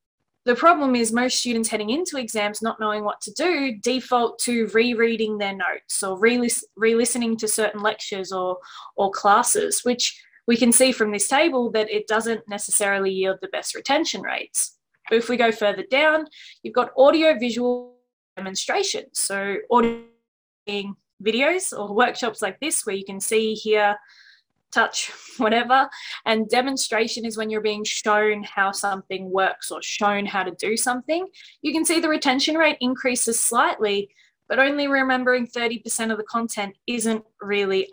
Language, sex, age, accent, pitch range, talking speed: English, female, 20-39, Australian, 210-265 Hz, 160 wpm